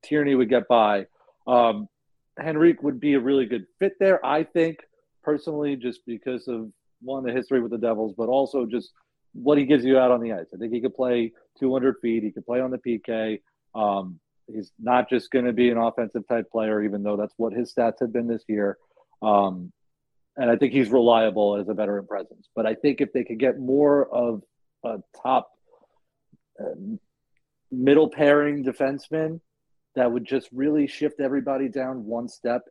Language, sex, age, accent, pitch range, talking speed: English, male, 40-59, American, 115-145 Hz, 185 wpm